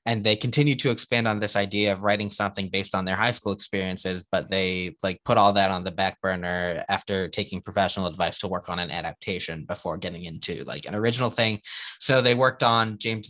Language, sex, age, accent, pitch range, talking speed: English, male, 20-39, American, 95-115 Hz, 215 wpm